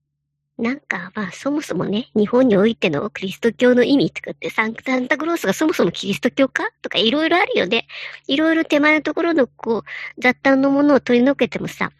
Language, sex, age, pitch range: Japanese, male, 40-59, 210-295 Hz